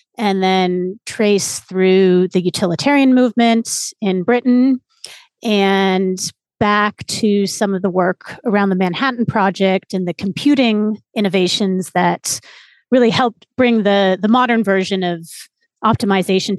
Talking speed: 125 wpm